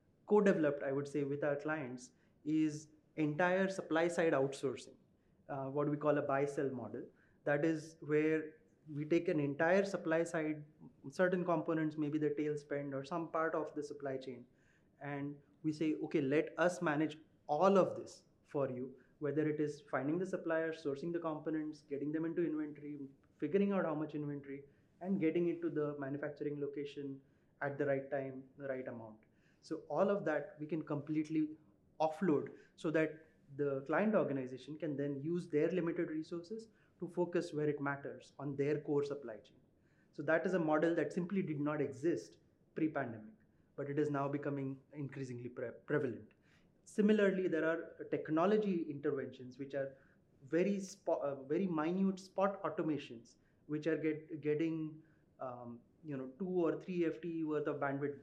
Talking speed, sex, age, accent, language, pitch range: 160 wpm, male, 20-39, Indian, English, 140-165 Hz